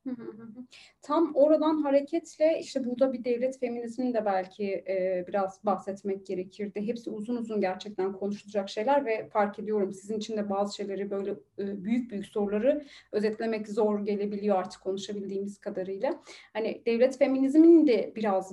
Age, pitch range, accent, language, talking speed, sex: 30-49, 200-275 Hz, native, Turkish, 135 wpm, female